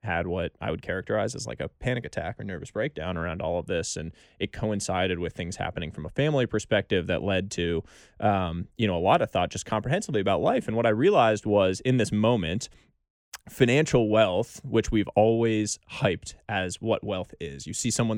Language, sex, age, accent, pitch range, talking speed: English, male, 20-39, American, 90-115 Hz, 205 wpm